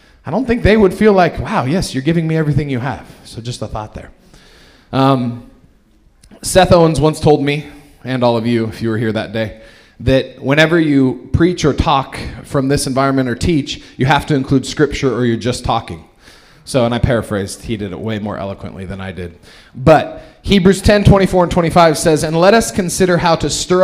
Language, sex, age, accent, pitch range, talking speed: English, male, 20-39, American, 115-150 Hz, 210 wpm